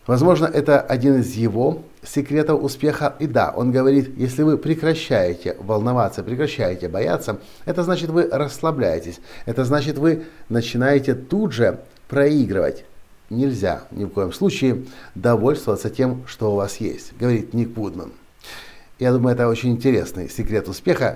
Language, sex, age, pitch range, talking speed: Russian, male, 50-69, 110-145 Hz, 140 wpm